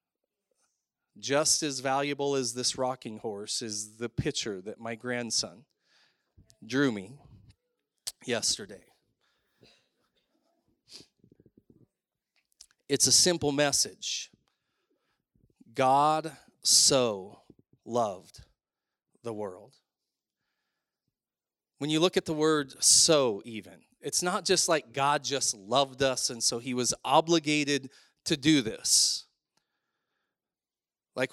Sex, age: male, 30-49